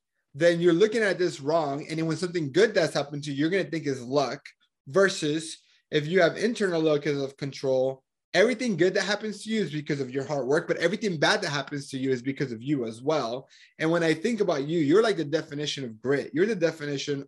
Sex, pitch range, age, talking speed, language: male, 140-180 Hz, 30-49, 235 wpm, English